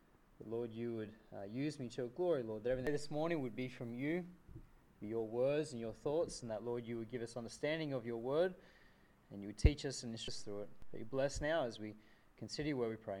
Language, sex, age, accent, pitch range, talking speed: English, male, 20-39, Australian, 125-160 Hz, 240 wpm